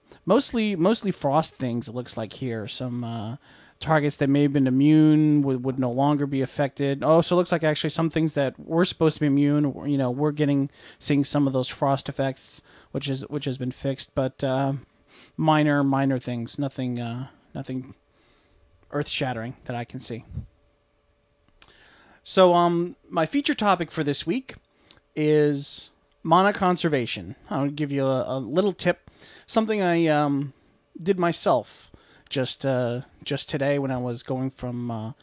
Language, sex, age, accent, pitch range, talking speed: English, male, 30-49, American, 130-160 Hz, 165 wpm